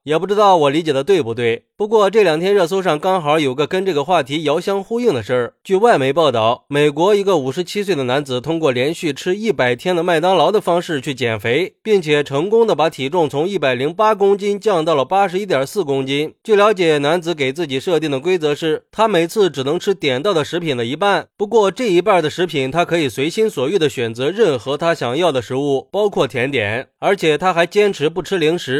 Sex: male